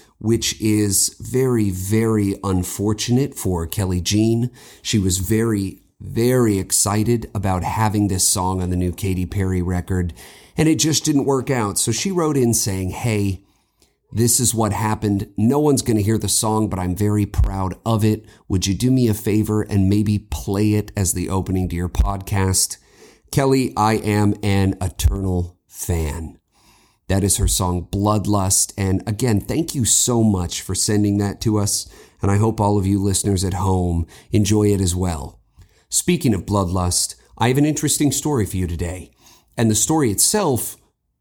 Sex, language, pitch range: male, English, 95-115 Hz